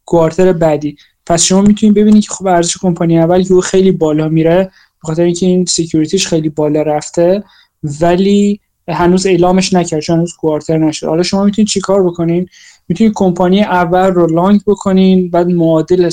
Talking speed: 165 wpm